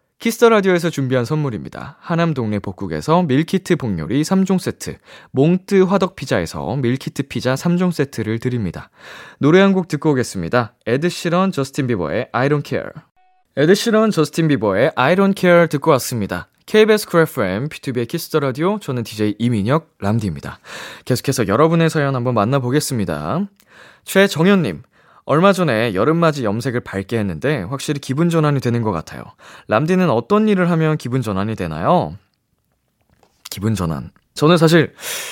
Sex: male